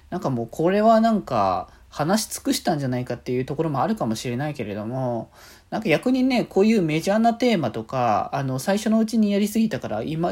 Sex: male